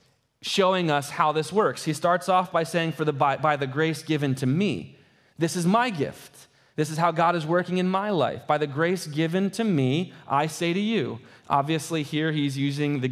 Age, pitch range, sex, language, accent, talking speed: 20-39, 135-175 Hz, male, English, American, 215 wpm